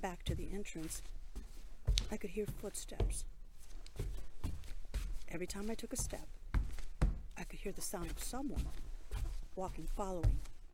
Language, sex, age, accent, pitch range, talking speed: English, female, 50-69, American, 150-220 Hz, 130 wpm